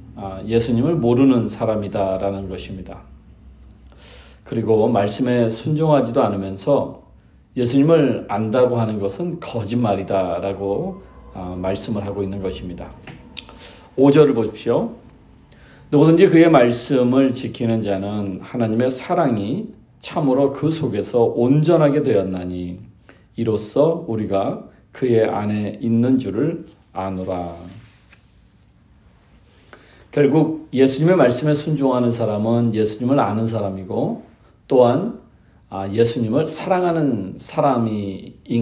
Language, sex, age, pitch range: Korean, male, 40-59, 100-135 Hz